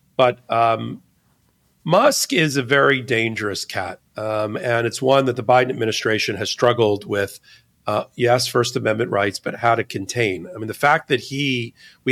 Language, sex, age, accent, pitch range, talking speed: English, male, 40-59, American, 115-145 Hz, 175 wpm